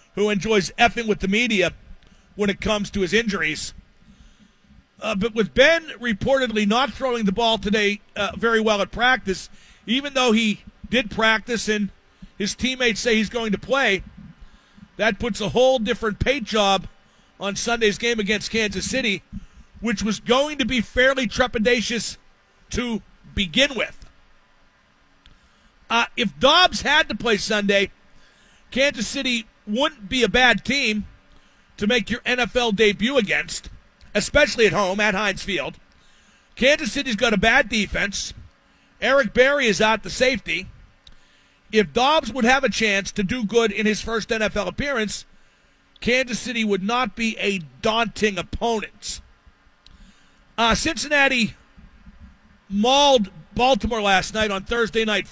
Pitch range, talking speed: 205-245 Hz, 145 wpm